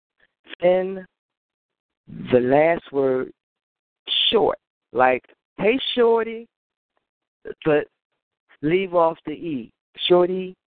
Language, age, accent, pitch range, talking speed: English, 50-69, American, 135-185 Hz, 85 wpm